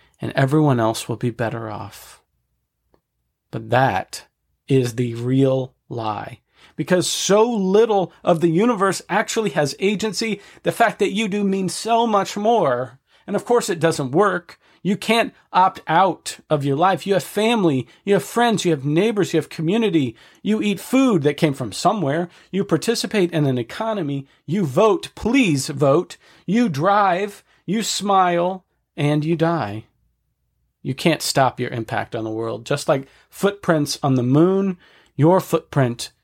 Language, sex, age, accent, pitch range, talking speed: English, male, 40-59, American, 125-185 Hz, 155 wpm